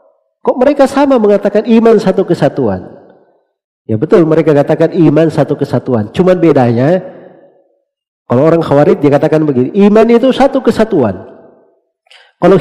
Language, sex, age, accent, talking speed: Indonesian, male, 40-59, native, 130 wpm